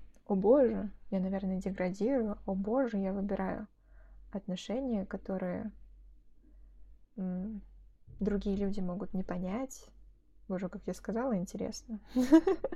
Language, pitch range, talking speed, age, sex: Russian, 190-225 Hz, 105 wpm, 20-39, female